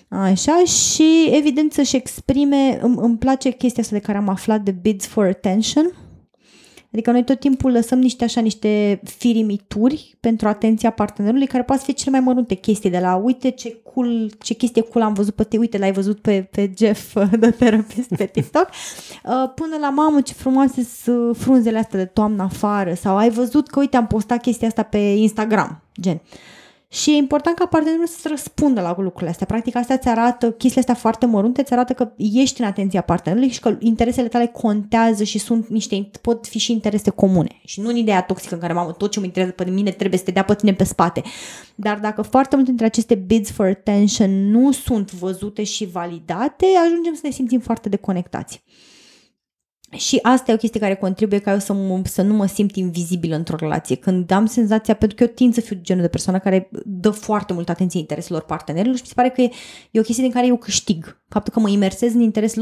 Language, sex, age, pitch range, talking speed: Romanian, female, 20-39, 200-245 Hz, 215 wpm